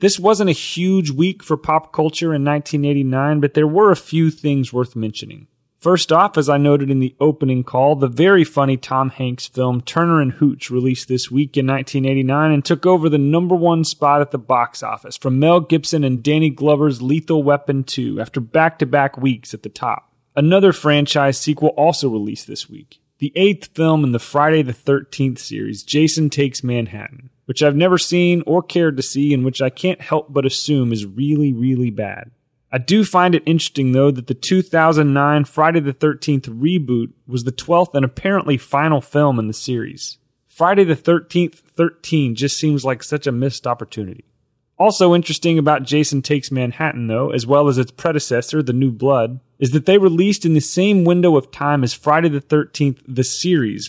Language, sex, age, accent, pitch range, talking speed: English, male, 30-49, American, 130-160 Hz, 190 wpm